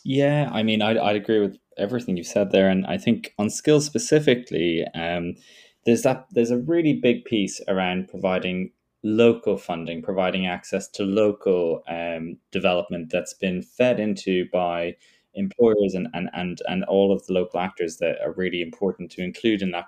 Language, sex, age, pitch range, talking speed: English, male, 20-39, 90-110 Hz, 175 wpm